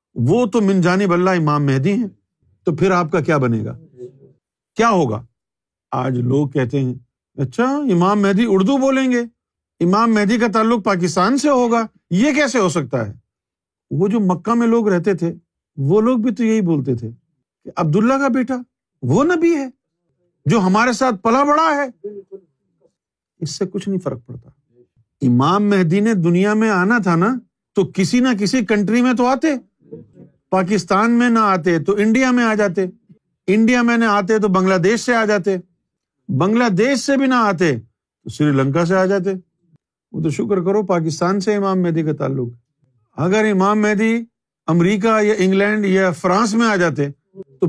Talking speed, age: 175 wpm, 50-69